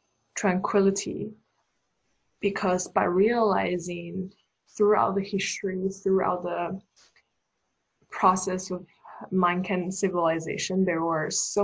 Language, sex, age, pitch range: Chinese, female, 20-39, 175-200 Hz